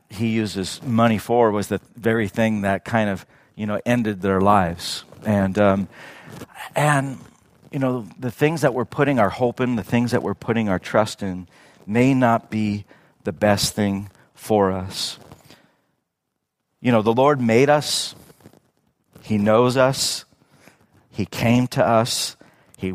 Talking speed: 155 wpm